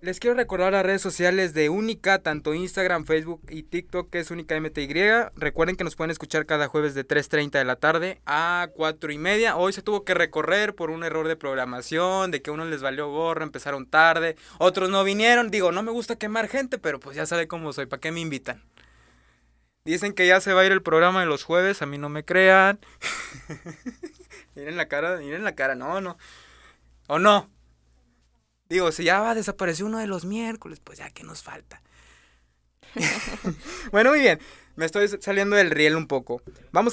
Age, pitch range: 20-39, 135-185 Hz